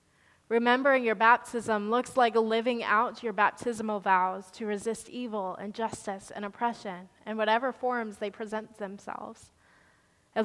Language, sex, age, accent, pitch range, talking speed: English, female, 20-39, American, 200-230 Hz, 140 wpm